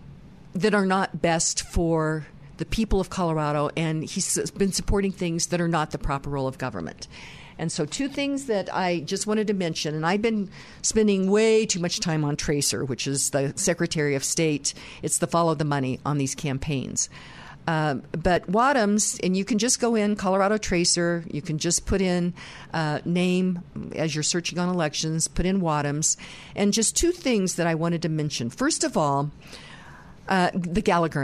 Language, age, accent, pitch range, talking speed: English, 50-69, American, 150-190 Hz, 185 wpm